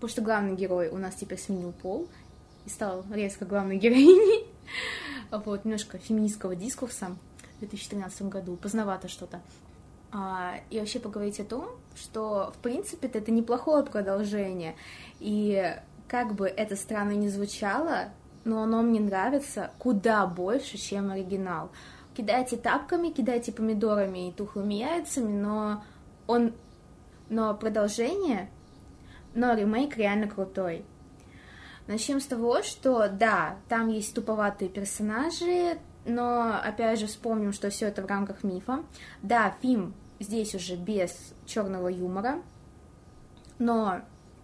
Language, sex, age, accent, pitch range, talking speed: Russian, female, 20-39, native, 195-235 Hz, 125 wpm